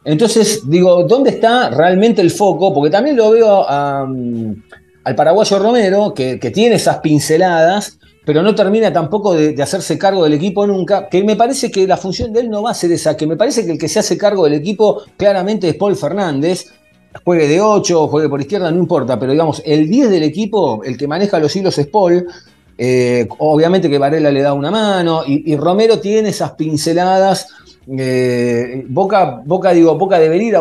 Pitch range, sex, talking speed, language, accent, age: 145-200 Hz, male, 195 wpm, Spanish, Argentinian, 40-59